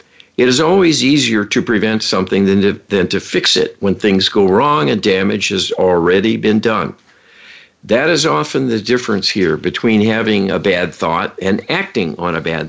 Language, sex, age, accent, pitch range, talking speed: English, male, 60-79, American, 95-115 Hz, 180 wpm